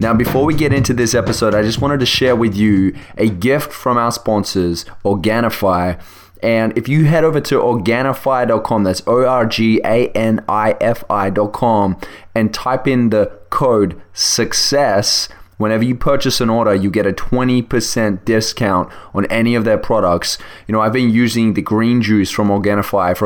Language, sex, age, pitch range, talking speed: English, male, 20-39, 100-120 Hz, 155 wpm